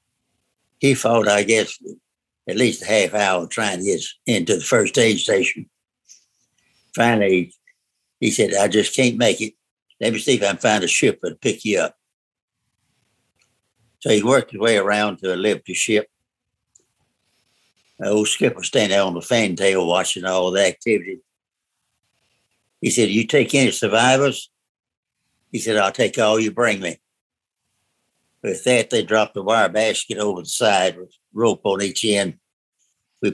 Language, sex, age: English, male, 60-79